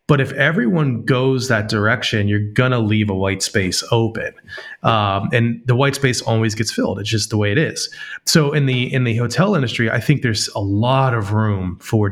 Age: 30-49